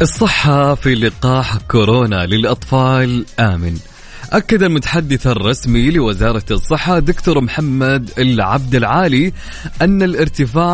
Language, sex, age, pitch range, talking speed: Arabic, male, 20-39, 120-165 Hz, 95 wpm